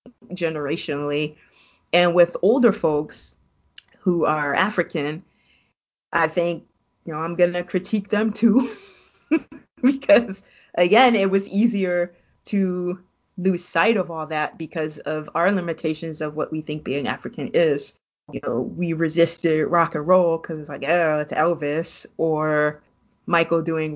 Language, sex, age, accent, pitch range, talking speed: English, female, 20-39, American, 165-200 Hz, 140 wpm